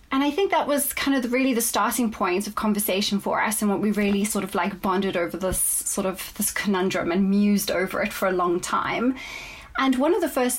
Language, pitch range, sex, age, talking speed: English, 200-245 Hz, female, 30-49, 240 wpm